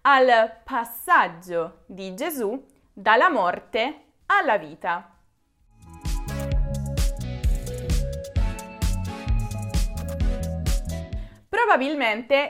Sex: female